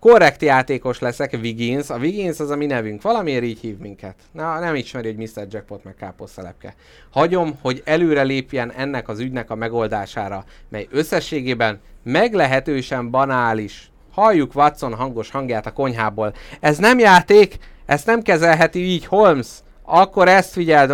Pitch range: 115-160 Hz